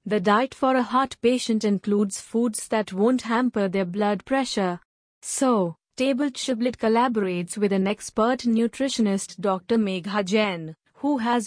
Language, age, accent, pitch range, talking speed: English, 30-49, Indian, 205-245 Hz, 140 wpm